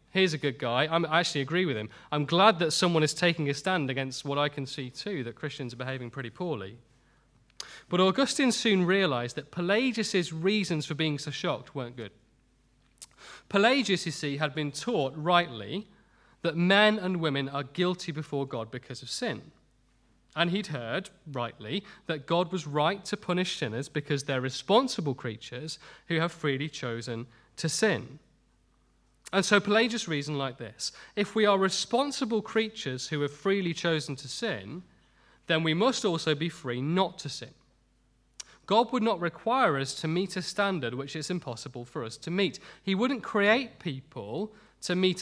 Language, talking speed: English, 170 wpm